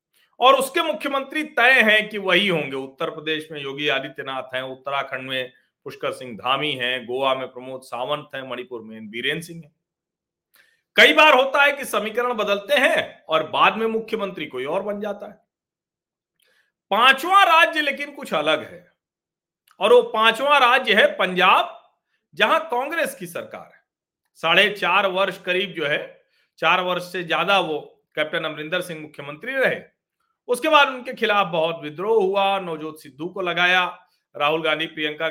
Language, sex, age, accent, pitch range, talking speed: Hindi, male, 40-59, native, 155-235 Hz, 160 wpm